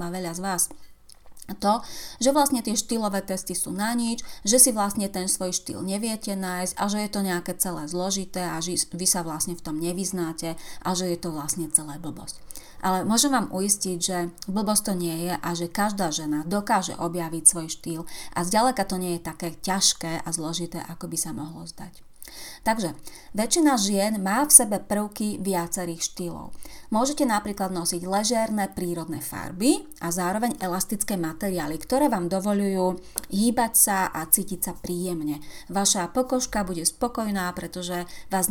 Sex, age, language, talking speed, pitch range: female, 30-49, Slovak, 170 wpm, 170-210 Hz